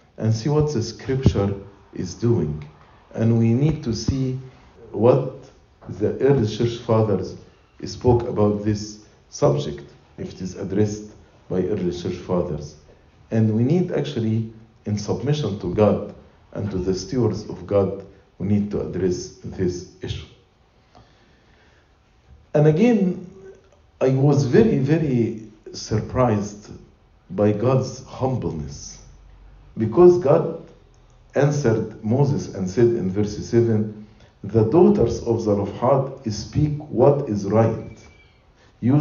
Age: 50-69